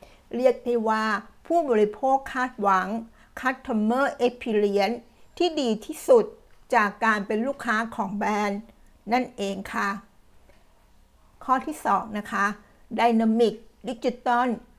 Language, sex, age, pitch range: Thai, female, 60-79, 205-245 Hz